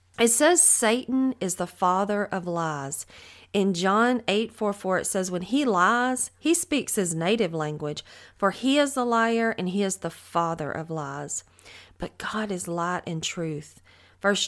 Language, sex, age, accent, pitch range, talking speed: English, female, 40-59, American, 170-220 Hz, 175 wpm